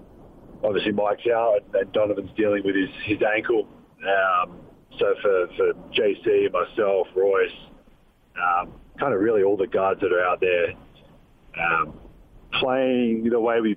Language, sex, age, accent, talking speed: English, male, 40-59, Australian, 145 wpm